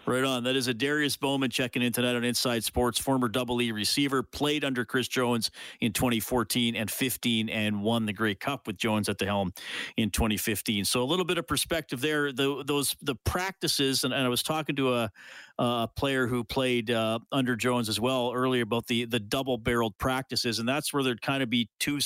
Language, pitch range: English, 115-135 Hz